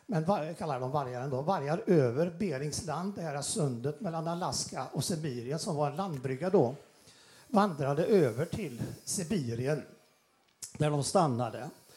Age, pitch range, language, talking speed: 60-79, 145-195 Hz, Swedish, 140 wpm